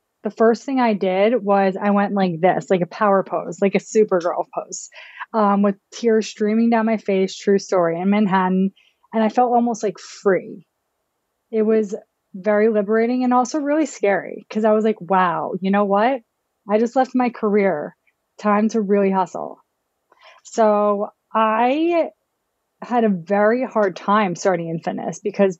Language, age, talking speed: English, 20-39, 170 wpm